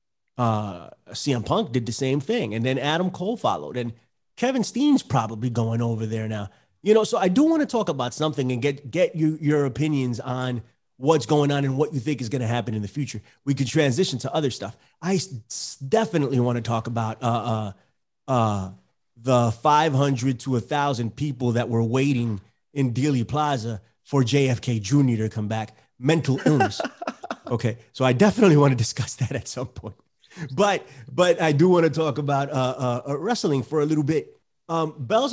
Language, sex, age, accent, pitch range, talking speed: English, male, 30-49, American, 120-165 Hz, 195 wpm